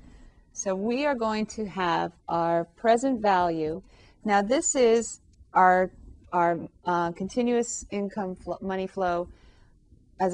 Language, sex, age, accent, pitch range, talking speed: English, female, 40-59, American, 170-215 Hz, 120 wpm